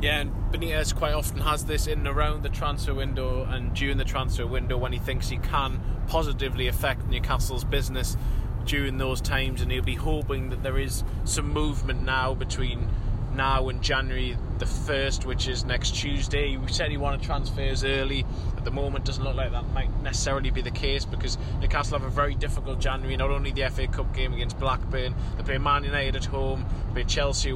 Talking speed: 200 wpm